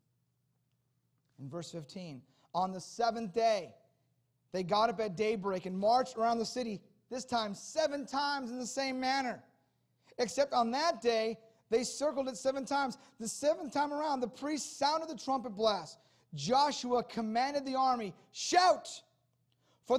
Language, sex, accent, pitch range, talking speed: English, male, American, 165-260 Hz, 150 wpm